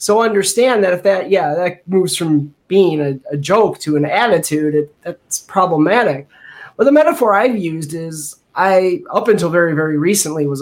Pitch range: 155-205 Hz